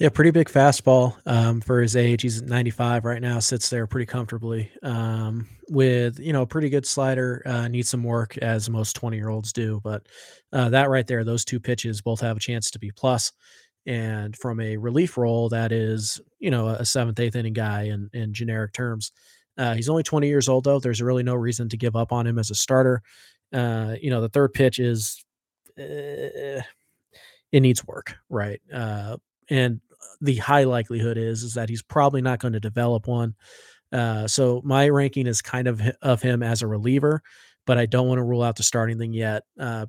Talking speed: 205 wpm